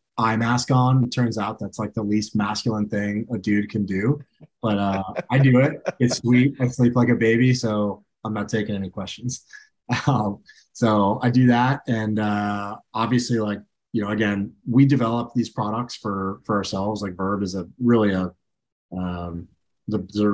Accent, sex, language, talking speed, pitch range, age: American, male, English, 185 wpm, 105-125 Hz, 30-49